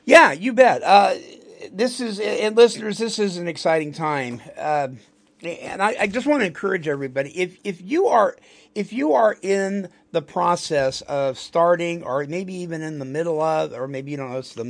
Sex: male